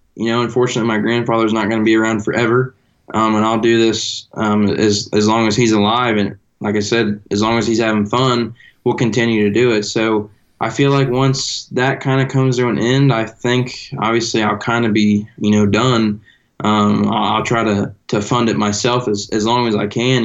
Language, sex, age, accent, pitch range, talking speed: English, male, 20-39, American, 105-120 Hz, 220 wpm